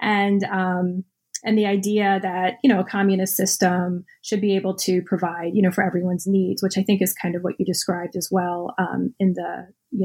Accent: American